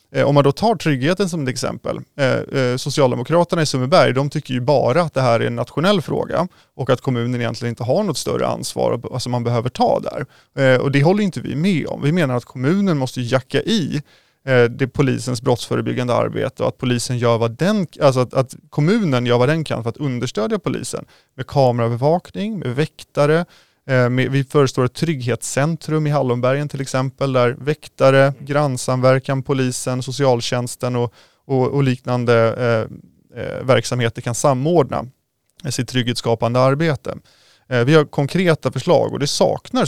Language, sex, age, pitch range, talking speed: Swedish, male, 30-49, 125-150 Hz, 165 wpm